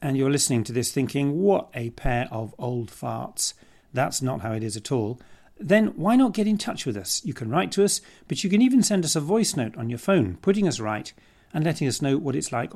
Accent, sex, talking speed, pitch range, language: British, male, 255 wpm, 110-150 Hz, English